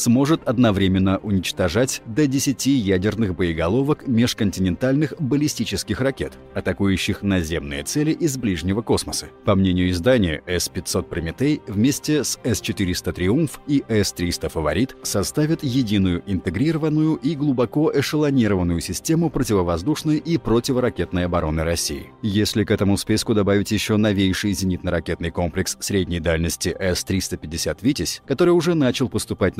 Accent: native